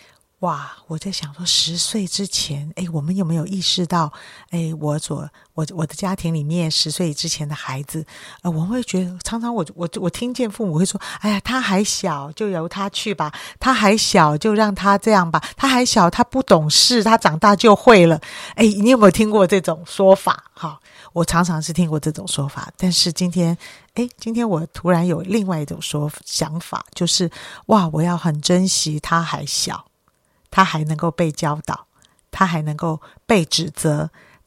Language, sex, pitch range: Chinese, female, 155-195 Hz